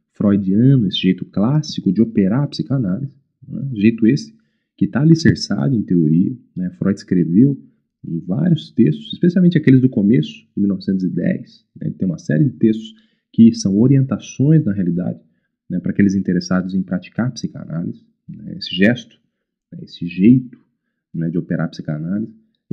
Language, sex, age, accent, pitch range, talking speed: Portuguese, male, 40-59, Brazilian, 100-145 Hz, 155 wpm